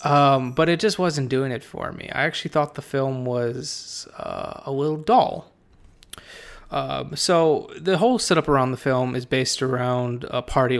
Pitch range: 125-145 Hz